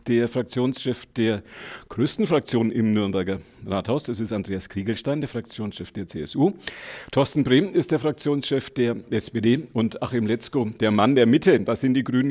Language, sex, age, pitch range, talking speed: German, male, 50-69, 105-125 Hz, 165 wpm